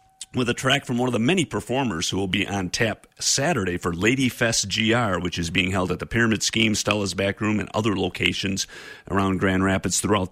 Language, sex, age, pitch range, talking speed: English, male, 40-59, 95-110 Hz, 205 wpm